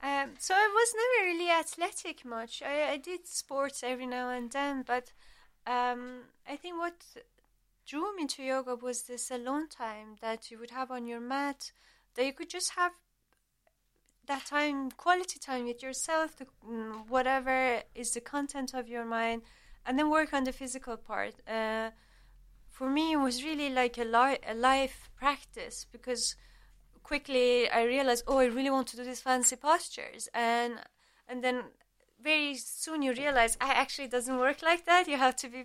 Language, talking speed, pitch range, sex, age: English, 175 wpm, 240-300 Hz, female, 20-39